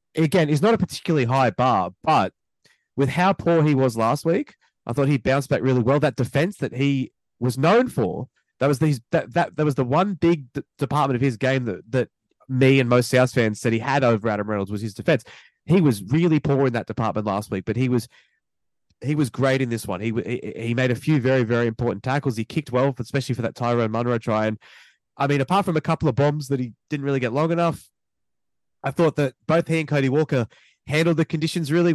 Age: 20-39